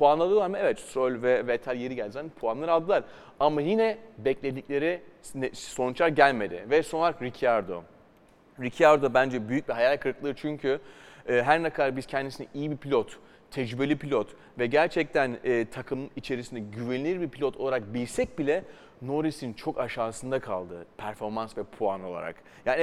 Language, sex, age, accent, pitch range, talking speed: Turkish, male, 30-49, native, 125-160 Hz, 150 wpm